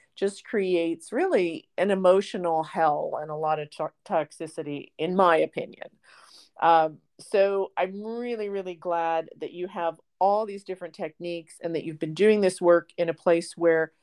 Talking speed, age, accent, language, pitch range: 165 wpm, 40-59, American, English, 155-205 Hz